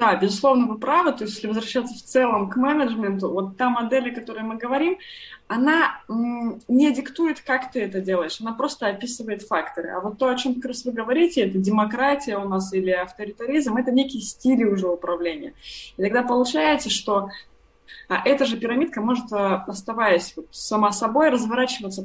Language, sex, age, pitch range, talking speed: Russian, female, 20-39, 195-255 Hz, 175 wpm